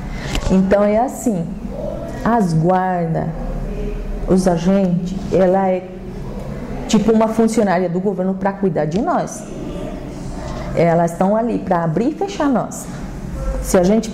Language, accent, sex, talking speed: Portuguese, Brazilian, female, 125 wpm